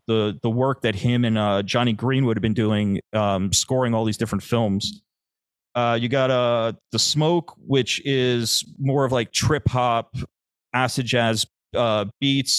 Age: 30-49